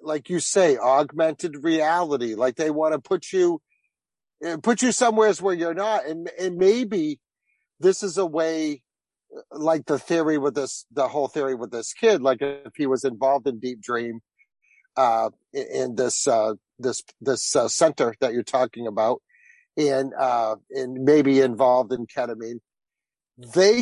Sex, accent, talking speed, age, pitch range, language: male, American, 160 wpm, 50-69, 135-205 Hz, English